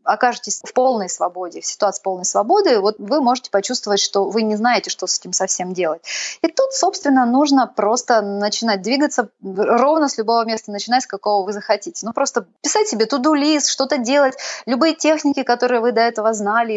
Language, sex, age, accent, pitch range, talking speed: Russian, female, 20-39, native, 205-260 Hz, 185 wpm